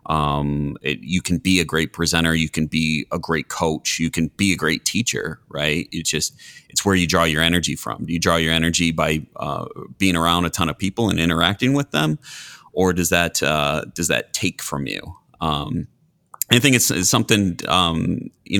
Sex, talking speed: male, 205 wpm